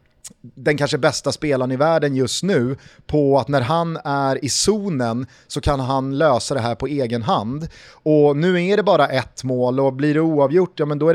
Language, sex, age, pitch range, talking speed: Swedish, male, 30-49, 125-160 Hz, 210 wpm